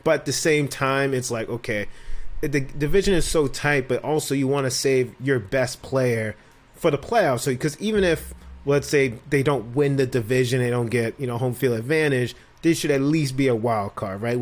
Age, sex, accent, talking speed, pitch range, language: 30-49, male, American, 225 wpm, 120-150 Hz, English